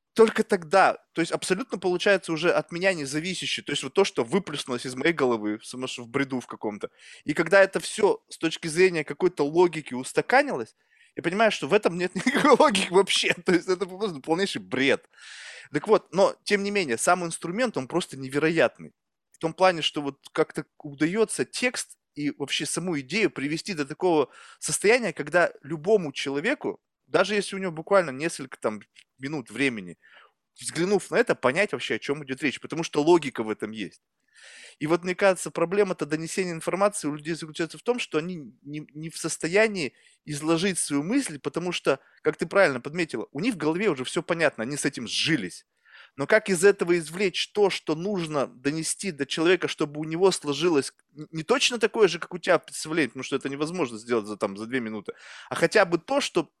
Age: 20-39